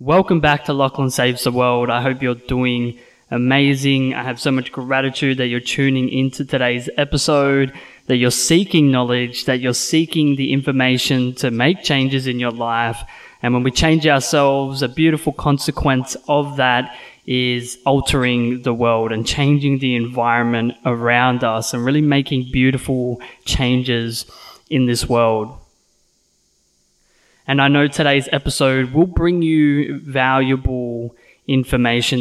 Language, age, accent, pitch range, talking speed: English, 20-39, Australian, 120-140 Hz, 140 wpm